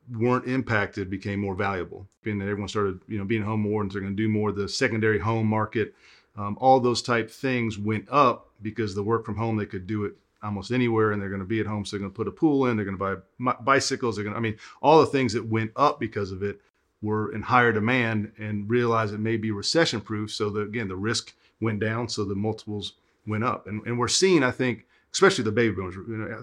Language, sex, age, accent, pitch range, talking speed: English, male, 40-59, American, 100-120 Hz, 250 wpm